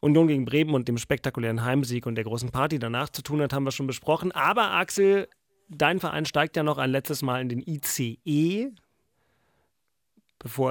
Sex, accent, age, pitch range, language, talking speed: male, German, 30-49, 120-150 Hz, German, 190 wpm